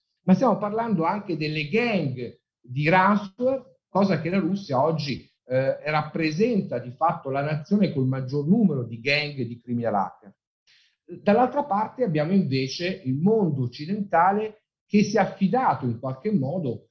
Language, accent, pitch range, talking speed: Italian, native, 135-195 Hz, 145 wpm